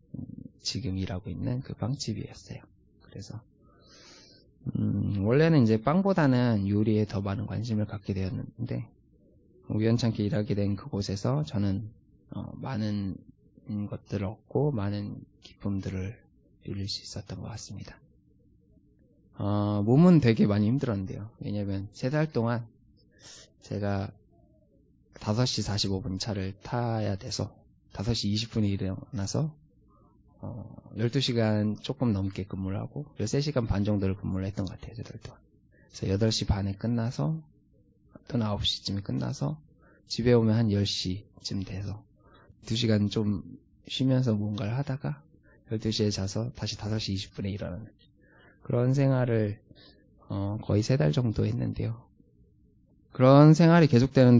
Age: 20-39